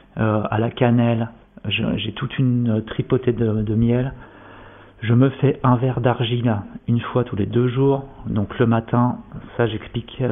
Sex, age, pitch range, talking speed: male, 40-59, 110-125 Hz, 165 wpm